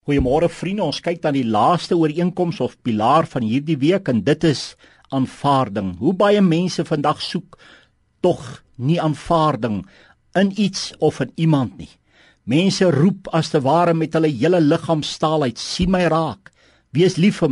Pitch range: 140-175 Hz